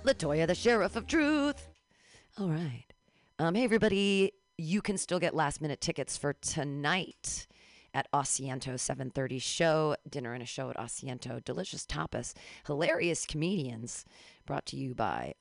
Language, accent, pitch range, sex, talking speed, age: English, American, 130-175 Hz, female, 140 wpm, 40-59